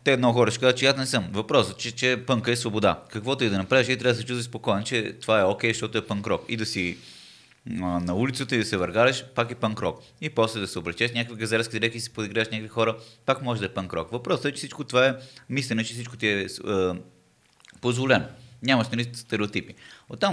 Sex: male